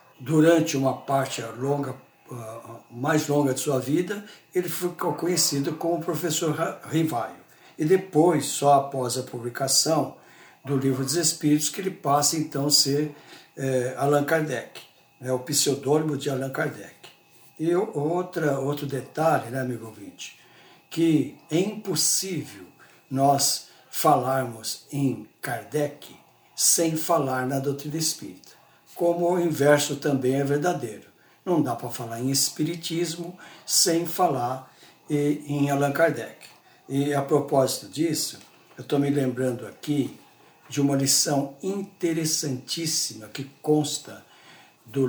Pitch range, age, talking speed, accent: 135-160 Hz, 60-79, 120 wpm, Brazilian